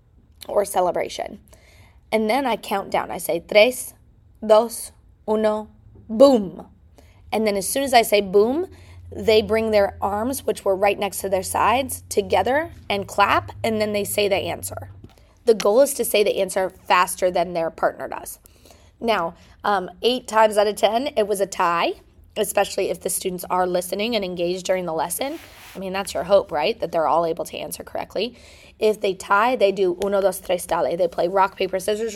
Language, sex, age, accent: English, female, 20-39, American